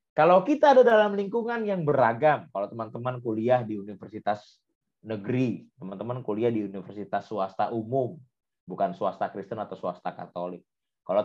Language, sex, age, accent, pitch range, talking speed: Indonesian, male, 30-49, native, 100-145 Hz, 140 wpm